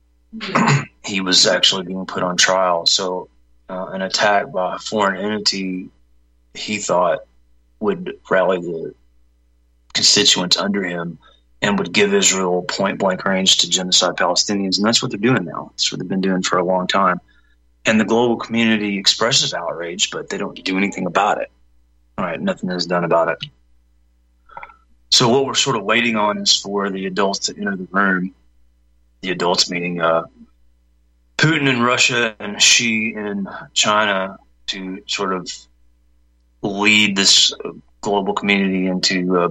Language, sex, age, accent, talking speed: English, male, 30-49, American, 155 wpm